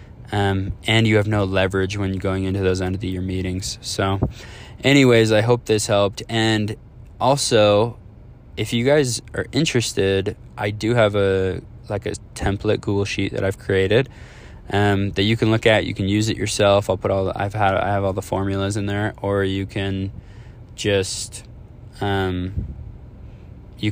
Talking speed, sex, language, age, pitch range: 180 wpm, male, English, 20-39, 95-110 Hz